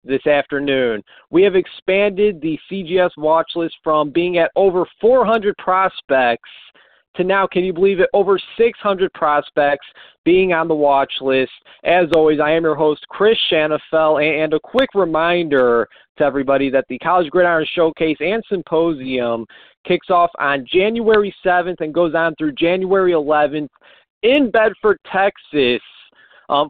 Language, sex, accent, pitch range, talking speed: English, male, American, 150-190 Hz, 145 wpm